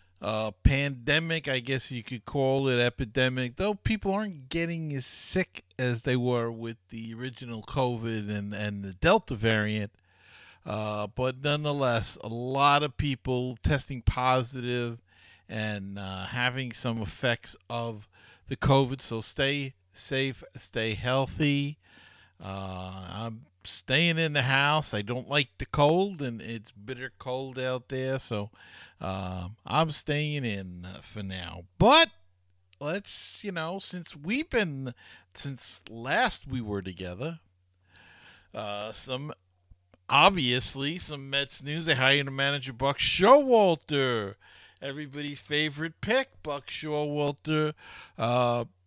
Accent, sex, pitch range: American, male, 105-145 Hz